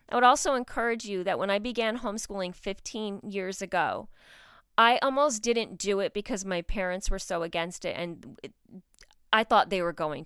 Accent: American